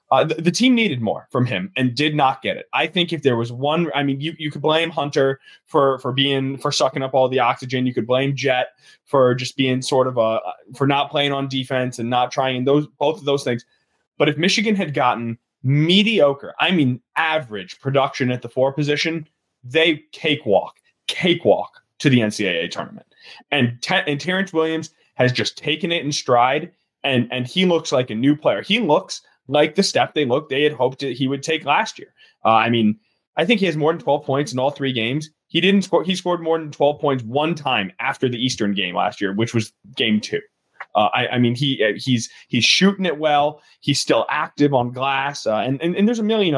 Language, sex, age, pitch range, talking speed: English, male, 20-39, 125-155 Hz, 225 wpm